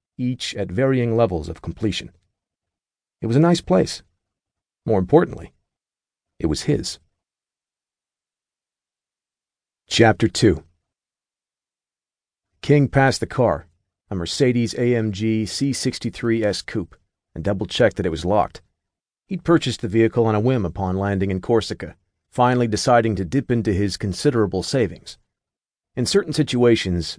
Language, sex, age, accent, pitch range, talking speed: English, male, 40-59, American, 90-120 Hz, 125 wpm